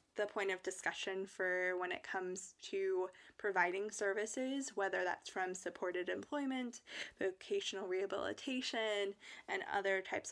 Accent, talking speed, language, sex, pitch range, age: American, 120 wpm, English, female, 185-245 Hz, 20-39